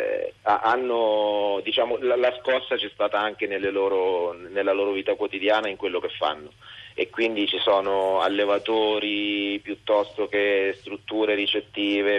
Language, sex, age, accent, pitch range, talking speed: Italian, male, 30-49, native, 95-120 Hz, 140 wpm